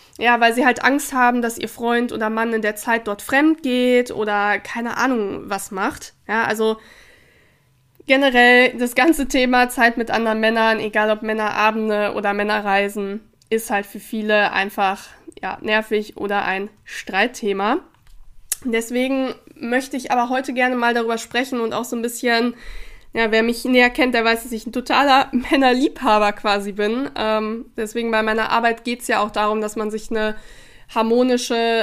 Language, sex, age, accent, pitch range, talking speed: German, female, 20-39, German, 215-245 Hz, 175 wpm